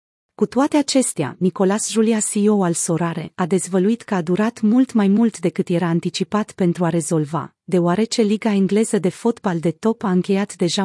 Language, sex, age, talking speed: Romanian, female, 30-49, 175 wpm